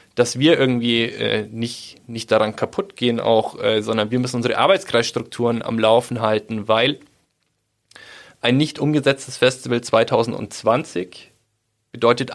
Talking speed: 125 wpm